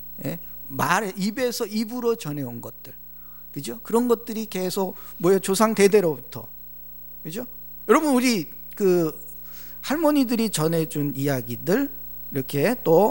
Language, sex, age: Korean, male, 50-69